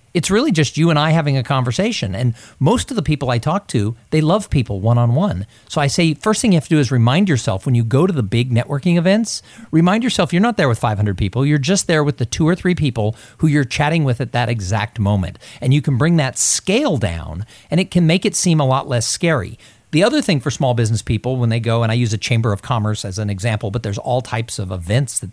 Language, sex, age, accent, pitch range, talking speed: English, male, 50-69, American, 120-180 Hz, 260 wpm